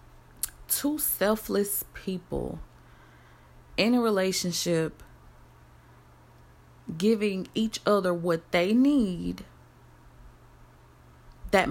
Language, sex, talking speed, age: English, female, 65 wpm, 20-39